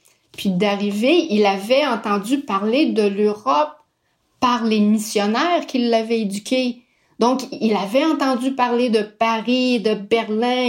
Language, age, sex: French, 40-59, female